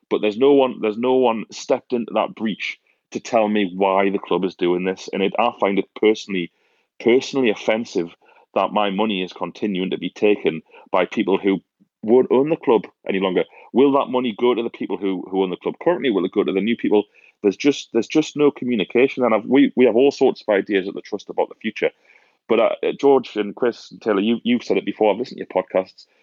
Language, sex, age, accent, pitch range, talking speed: English, male, 30-49, British, 95-125 Hz, 235 wpm